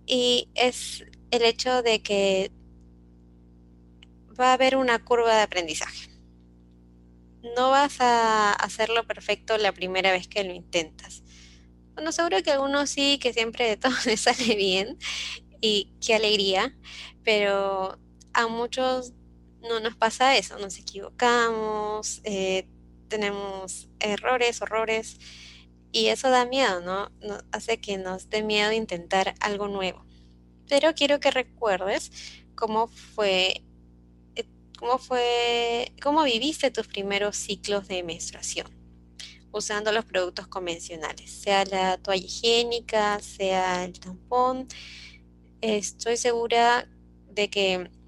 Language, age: Spanish, 20-39